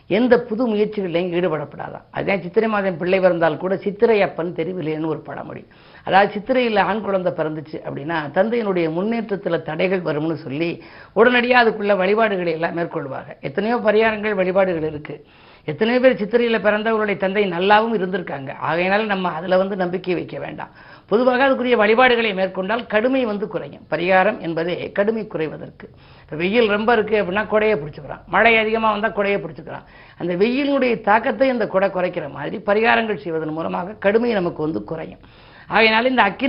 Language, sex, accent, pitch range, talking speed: Tamil, female, native, 165-220 Hz, 145 wpm